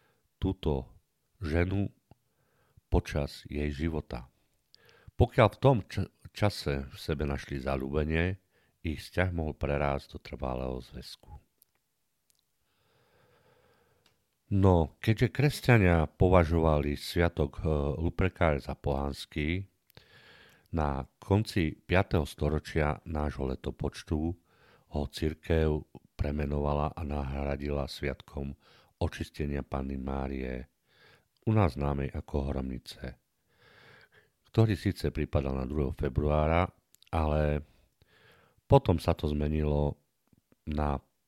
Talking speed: 85 wpm